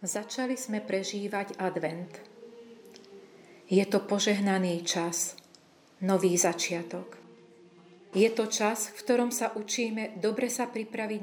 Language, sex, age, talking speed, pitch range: Slovak, female, 40-59, 105 wpm, 190-230 Hz